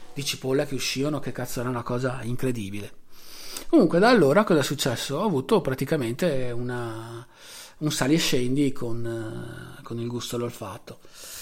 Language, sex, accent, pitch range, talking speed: Italian, male, native, 115-150 Hz, 160 wpm